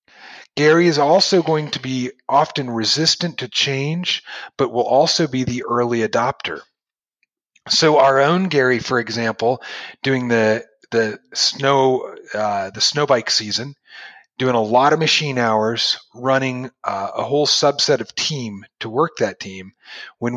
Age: 40-59